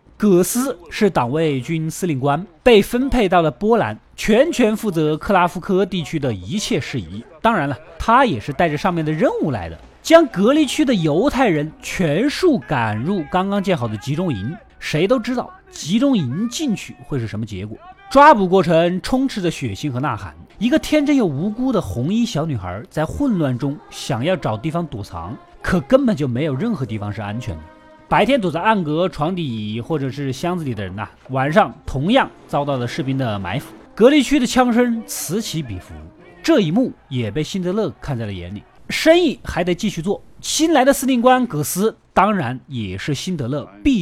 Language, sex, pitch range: Chinese, male, 140-220 Hz